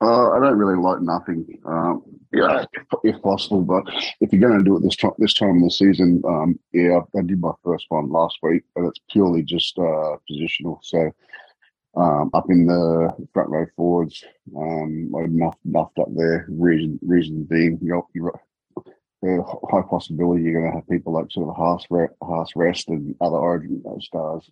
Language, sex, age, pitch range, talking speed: English, male, 30-49, 80-90 Hz, 180 wpm